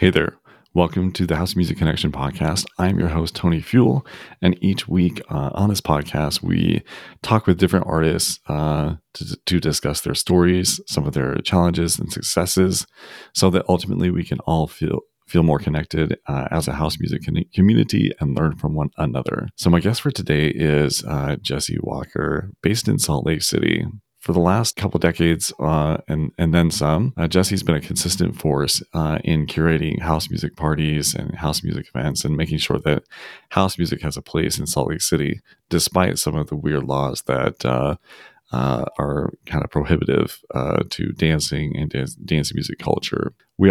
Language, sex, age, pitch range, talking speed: English, male, 30-49, 75-90 Hz, 185 wpm